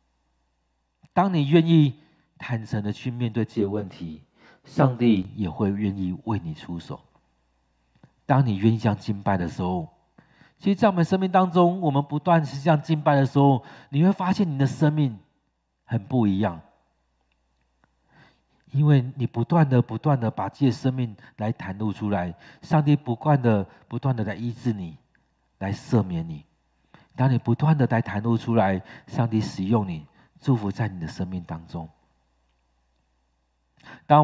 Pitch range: 95-140 Hz